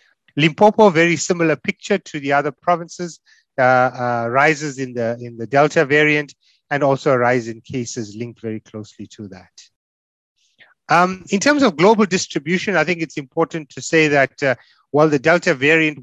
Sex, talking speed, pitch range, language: male, 170 wpm, 120-160 Hz, English